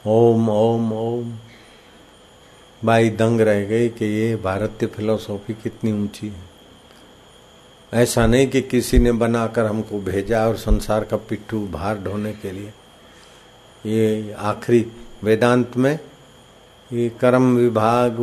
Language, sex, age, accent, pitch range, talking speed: Hindi, male, 50-69, native, 110-120 Hz, 120 wpm